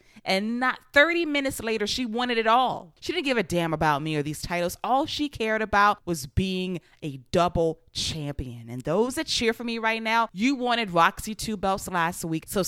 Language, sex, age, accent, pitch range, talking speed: English, female, 20-39, American, 155-220 Hz, 210 wpm